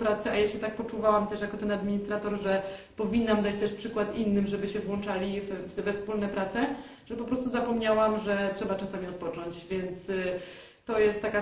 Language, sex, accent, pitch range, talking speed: Polish, female, native, 180-220 Hz, 185 wpm